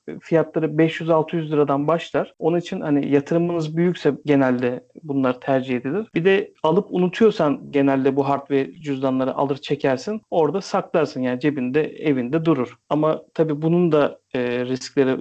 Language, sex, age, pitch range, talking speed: Turkish, male, 40-59, 140-165 Hz, 135 wpm